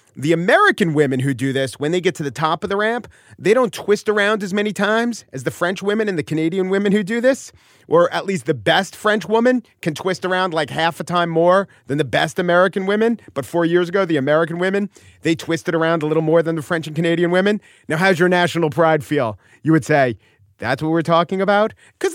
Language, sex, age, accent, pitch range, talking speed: English, male, 40-59, American, 135-185 Hz, 235 wpm